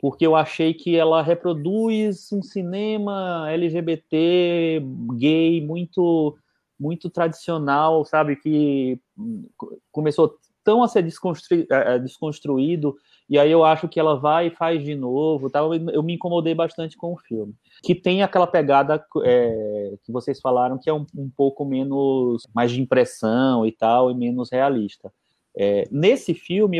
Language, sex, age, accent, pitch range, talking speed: Portuguese, male, 30-49, Brazilian, 130-175 Hz, 135 wpm